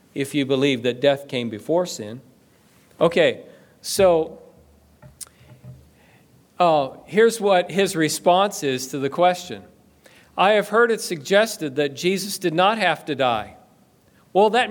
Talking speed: 135 wpm